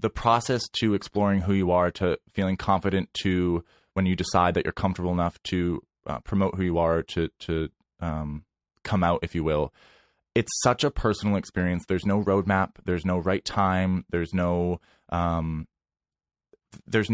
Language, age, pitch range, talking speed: English, 20-39, 85-100 Hz, 170 wpm